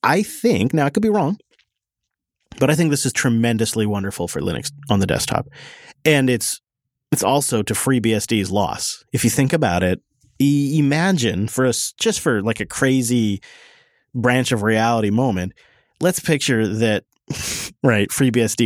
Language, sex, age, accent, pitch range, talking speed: English, male, 30-49, American, 105-140 Hz, 155 wpm